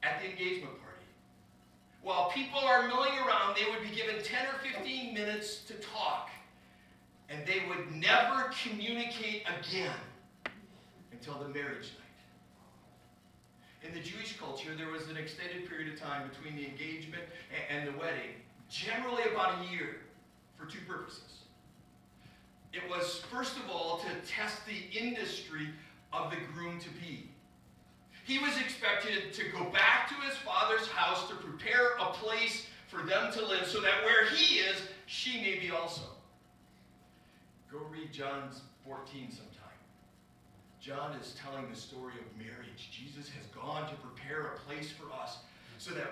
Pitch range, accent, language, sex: 145-215 Hz, American, English, male